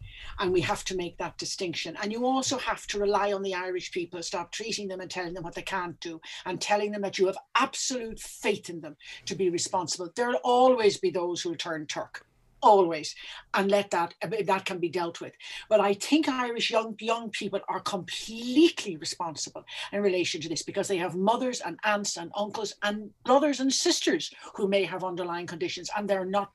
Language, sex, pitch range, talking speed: English, female, 175-220 Hz, 205 wpm